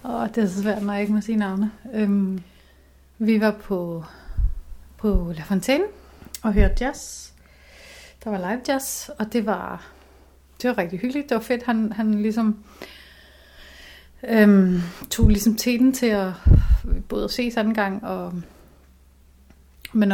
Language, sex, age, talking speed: Danish, female, 30-49, 155 wpm